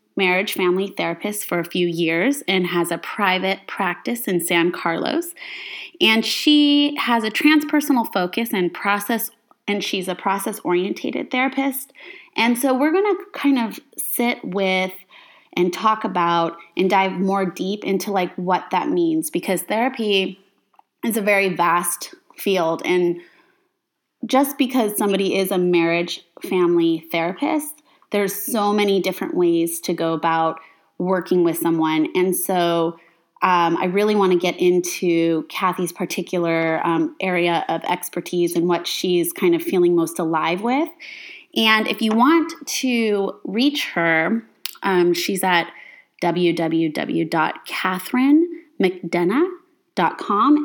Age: 20-39